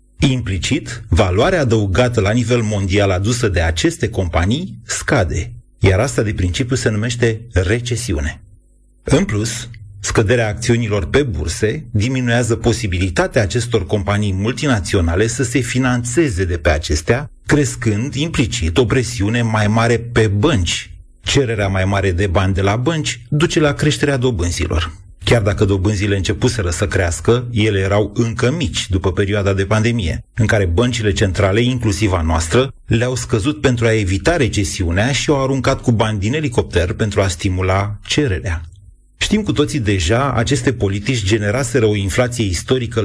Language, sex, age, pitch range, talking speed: Romanian, male, 30-49, 100-120 Hz, 145 wpm